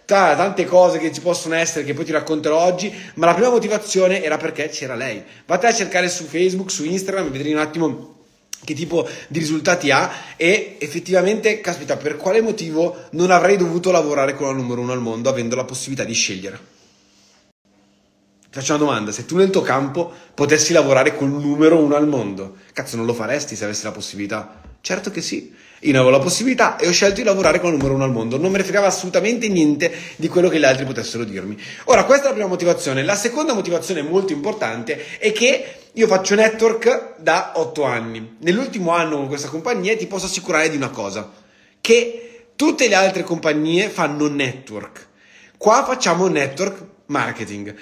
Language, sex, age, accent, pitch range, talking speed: Italian, male, 30-49, native, 145-220 Hz, 190 wpm